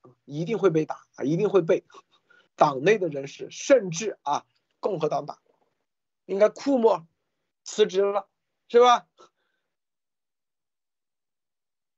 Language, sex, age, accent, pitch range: Chinese, male, 50-69, native, 155-245 Hz